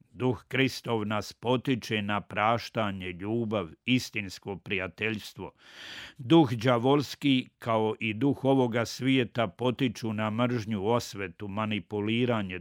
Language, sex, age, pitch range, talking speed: Croatian, male, 50-69, 105-125 Hz, 100 wpm